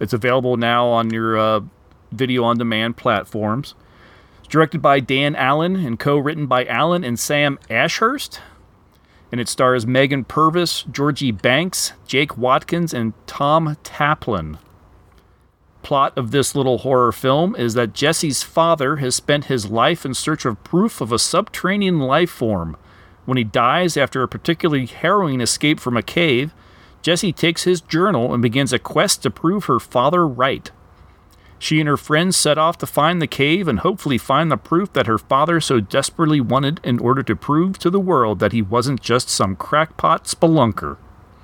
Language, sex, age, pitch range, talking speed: English, male, 40-59, 110-155 Hz, 165 wpm